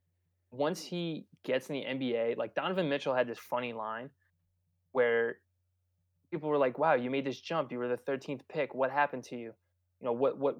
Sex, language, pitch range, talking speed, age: male, English, 110-135 Hz, 200 wpm, 20-39